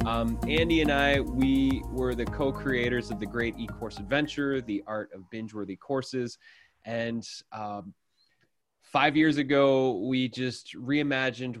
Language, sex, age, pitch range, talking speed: English, male, 20-39, 110-135 Hz, 135 wpm